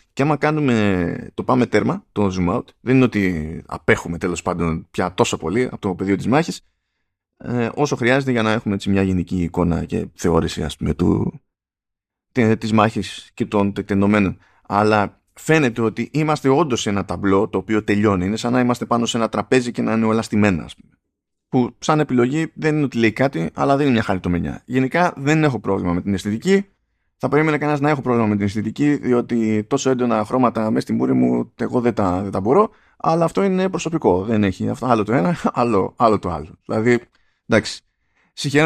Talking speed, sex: 190 wpm, male